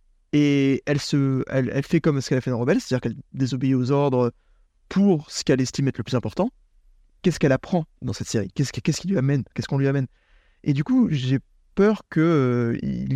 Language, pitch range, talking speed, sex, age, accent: French, 125-155 Hz, 220 wpm, male, 20-39, French